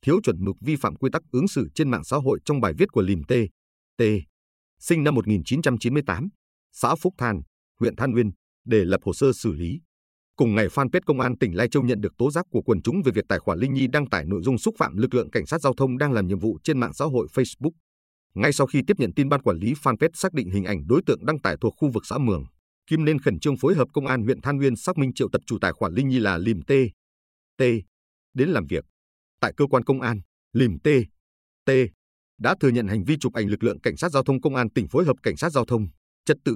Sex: male